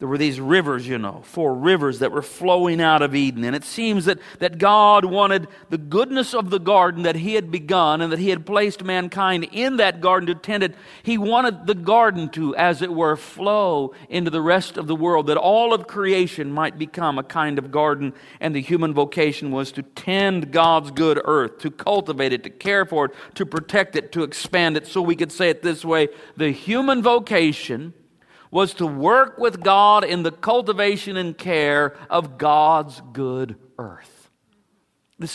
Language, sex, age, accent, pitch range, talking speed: English, male, 50-69, American, 150-195 Hz, 195 wpm